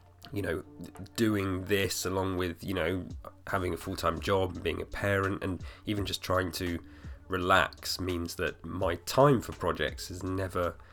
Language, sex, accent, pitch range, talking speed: English, male, British, 85-100 Hz, 160 wpm